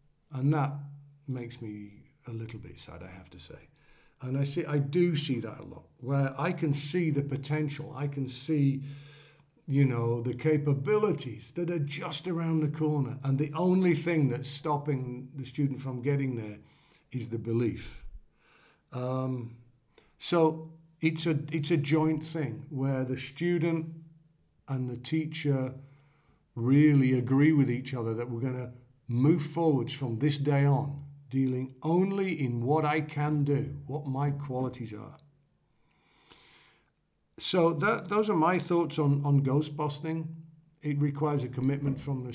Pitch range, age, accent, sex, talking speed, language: 130-155 Hz, 50-69, British, male, 155 wpm, English